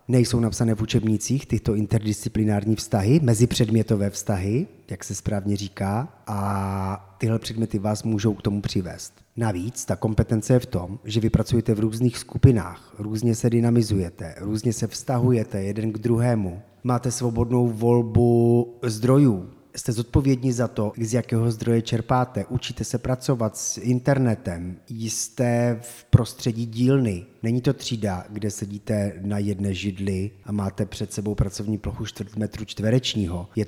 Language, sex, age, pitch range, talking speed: Czech, male, 30-49, 105-120 Hz, 145 wpm